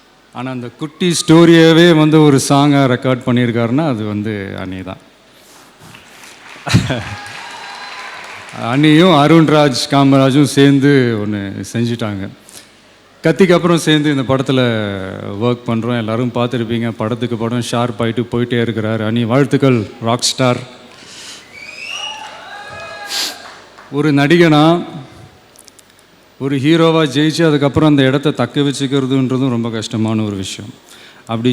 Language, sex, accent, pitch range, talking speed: Tamil, male, native, 110-140 Hz, 95 wpm